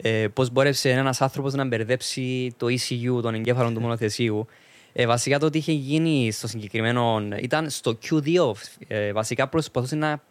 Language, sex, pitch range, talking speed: Greek, male, 120-155 Hz, 145 wpm